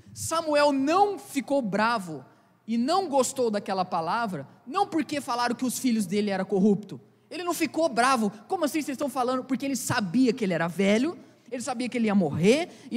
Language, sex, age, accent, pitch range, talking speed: Portuguese, male, 20-39, Brazilian, 195-255 Hz, 190 wpm